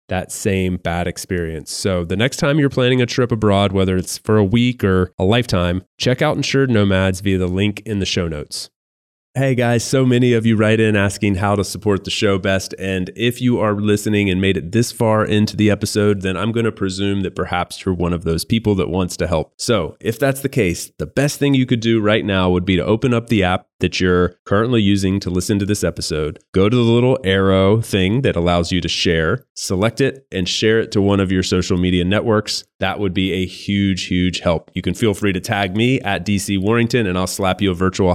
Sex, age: male, 30-49